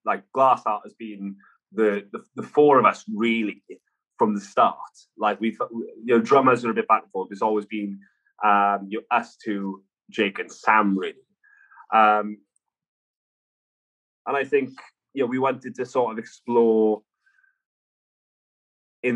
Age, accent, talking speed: 20-39, British, 160 wpm